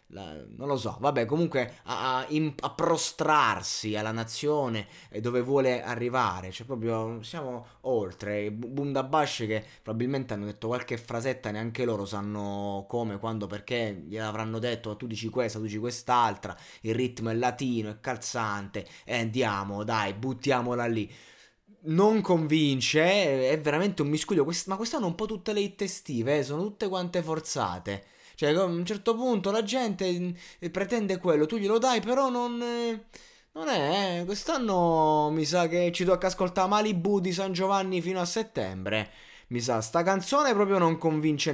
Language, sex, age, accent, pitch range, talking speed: Italian, male, 20-39, native, 115-185 Hz, 165 wpm